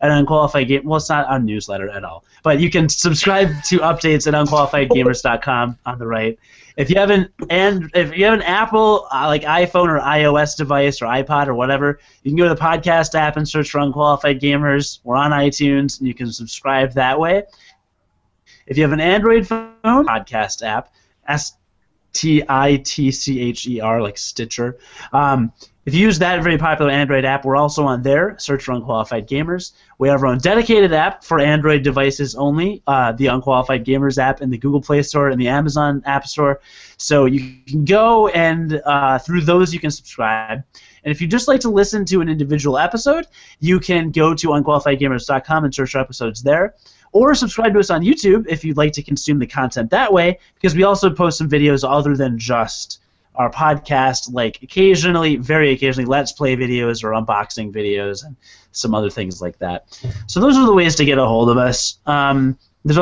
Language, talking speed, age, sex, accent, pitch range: English, 195 wpm, 20-39, male, American, 125-160 Hz